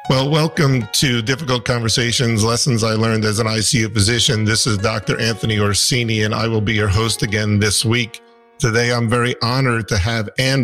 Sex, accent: male, American